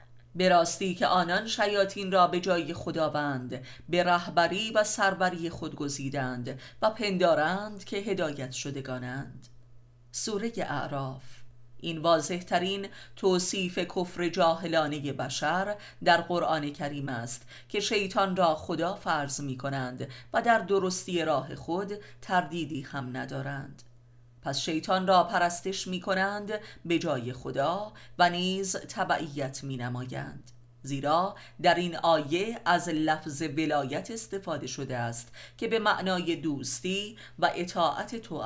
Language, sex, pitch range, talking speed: Persian, female, 135-185 Hz, 125 wpm